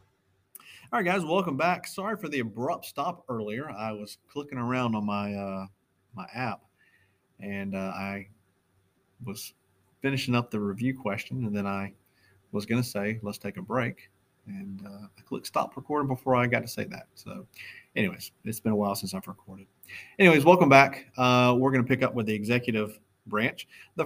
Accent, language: American, English